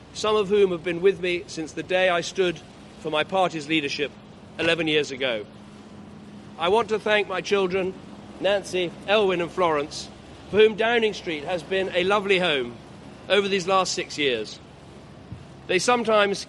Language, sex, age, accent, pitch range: Chinese, male, 40-59, British, 160-200 Hz